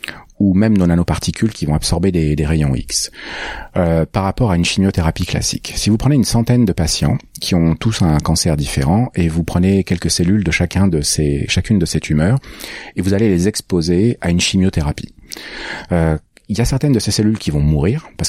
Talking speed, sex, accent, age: 210 wpm, male, French, 40-59